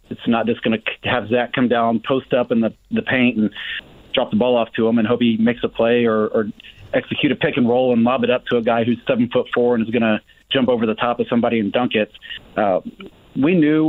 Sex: male